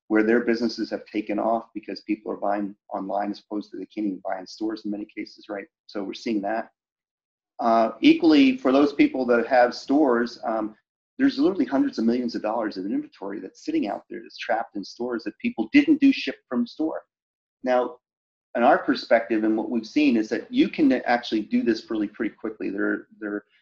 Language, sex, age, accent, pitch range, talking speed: English, male, 30-49, American, 105-130 Hz, 205 wpm